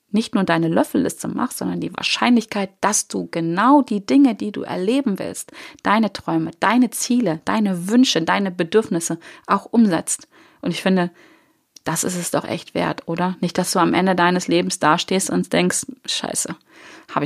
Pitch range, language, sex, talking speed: 180-220 Hz, German, female, 170 wpm